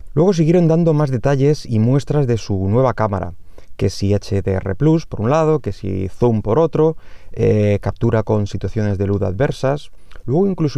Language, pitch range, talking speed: Spanish, 100-125 Hz, 180 wpm